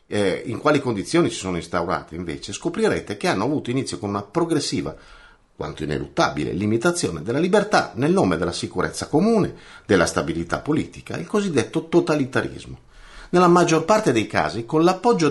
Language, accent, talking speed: Italian, native, 155 wpm